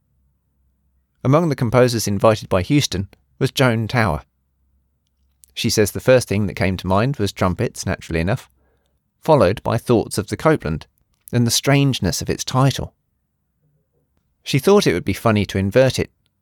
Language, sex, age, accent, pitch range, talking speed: English, male, 30-49, British, 90-125 Hz, 155 wpm